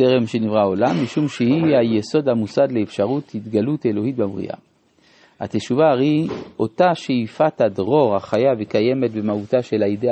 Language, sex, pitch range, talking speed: Hebrew, male, 110-155 Hz, 125 wpm